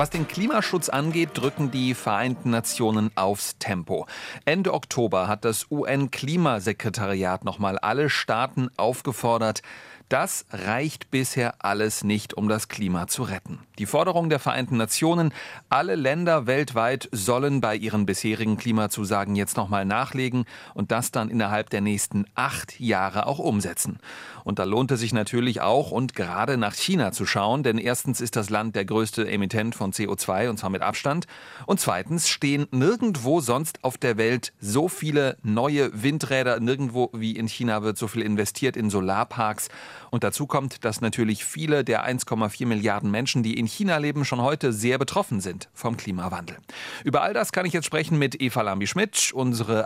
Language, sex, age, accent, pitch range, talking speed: German, male, 40-59, German, 105-140 Hz, 165 wpm